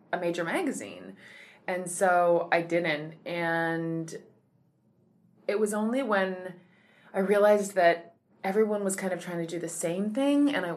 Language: English